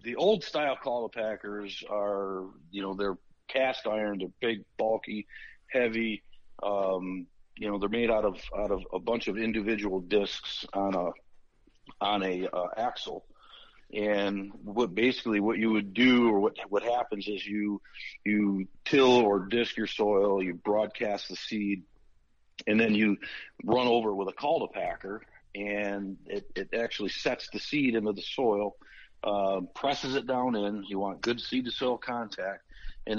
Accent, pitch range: American, 100-115 Hz